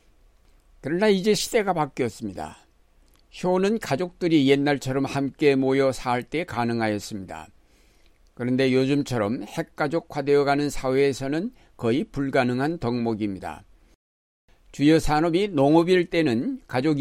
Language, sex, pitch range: Korean, male, 115-155 Hz